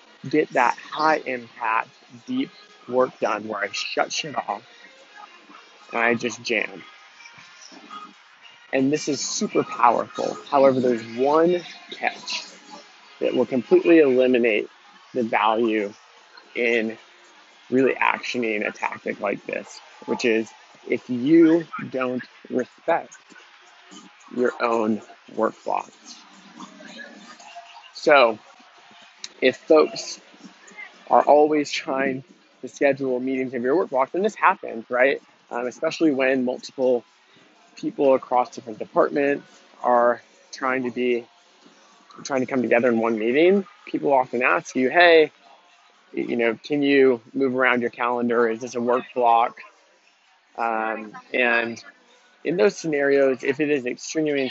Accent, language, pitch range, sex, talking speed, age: American, English, 120-140 Hz, male, 120 wpm, 20-39